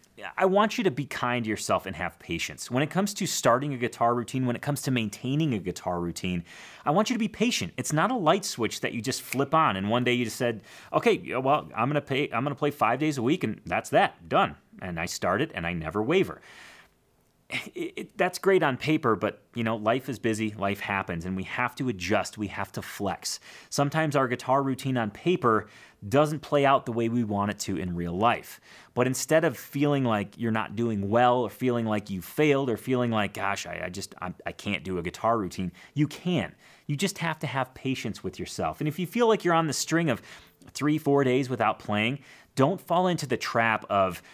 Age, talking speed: 30-49, 230 wpm